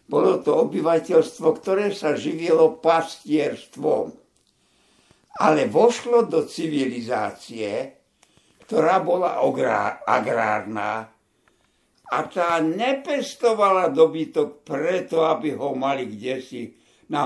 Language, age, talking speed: Slovak, 60-79, 85 wpm